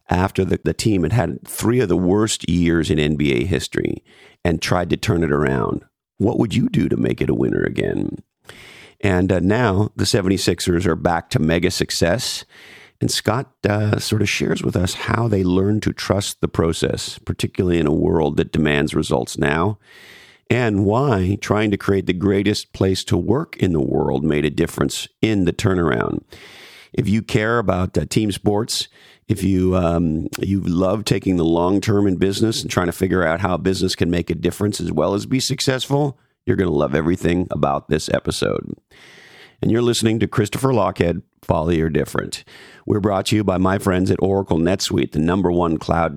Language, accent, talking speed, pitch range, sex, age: English, American, 190 wpm, 85-105 Hz, male, 50-69